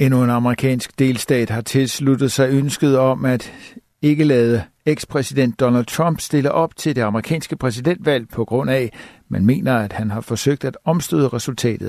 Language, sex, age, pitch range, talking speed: Danish, male, 60-79, 115-135 Hz, 170 wpm